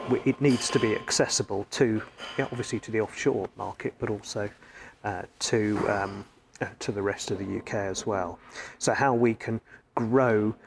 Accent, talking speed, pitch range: British, 165 wpm, 105-130 Hz